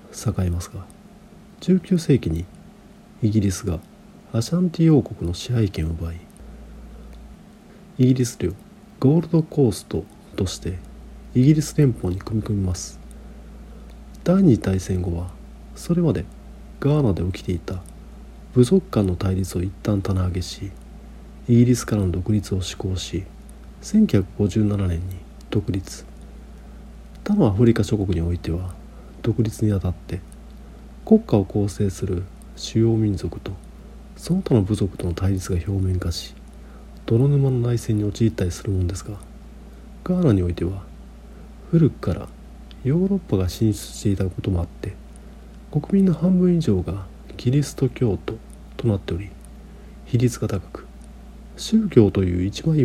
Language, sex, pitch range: Japanese, male, 95-130 Hz